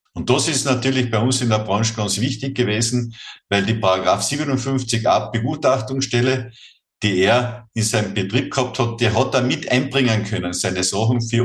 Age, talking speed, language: 50-69, 175 wpm, German